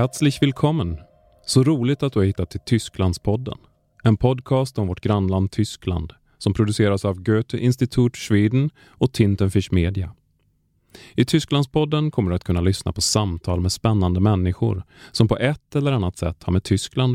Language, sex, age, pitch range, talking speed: Swedish, male, 30-49, 95-125 Hz, 160 wpm